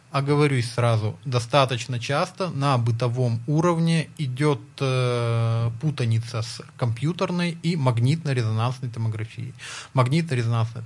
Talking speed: 90 wpm